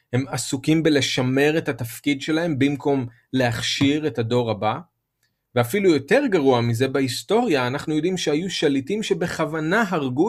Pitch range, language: 120-160 Hz, Hebrew